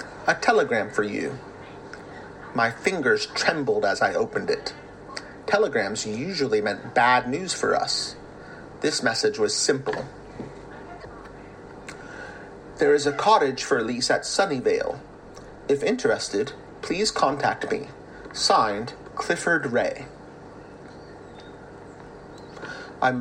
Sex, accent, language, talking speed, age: male, American, English, 100 wpm, 30-49